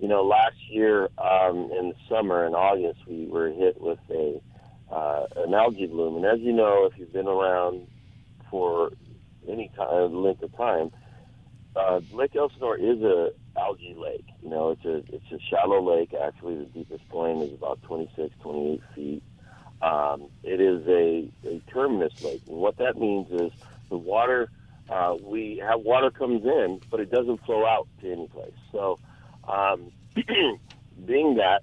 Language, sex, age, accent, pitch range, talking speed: English, male, 50-69, American, 90-135 Hz, 170 wpm